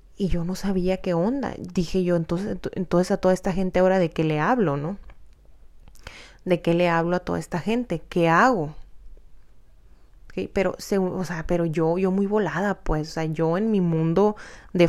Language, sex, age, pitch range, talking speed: Spanish, female, 20-39, 165-210 Hz, 190 wpm